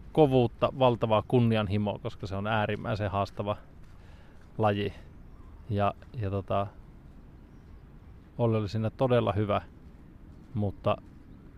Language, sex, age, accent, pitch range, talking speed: Finnish, male, 20-39, native, 85-110 Hz, 80 wpm